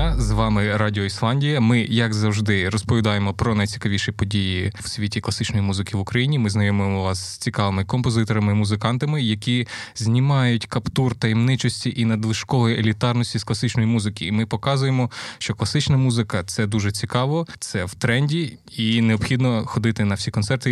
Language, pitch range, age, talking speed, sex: Ukrainian, 110-130 Hz, 20-39, 150 wpm, male